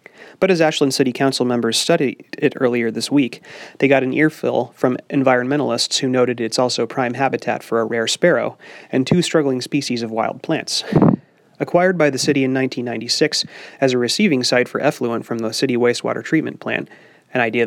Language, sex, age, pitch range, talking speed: English, male, 30-49, 120-140 Hz, 185 wpm